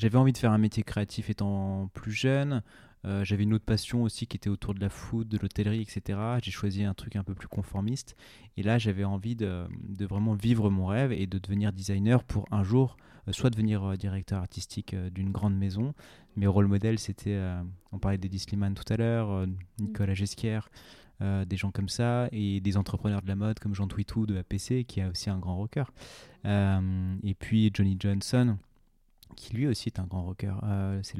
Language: French